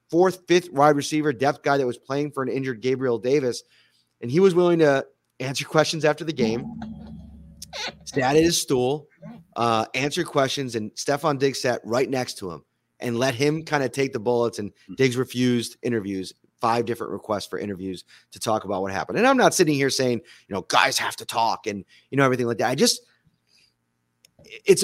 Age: 30-49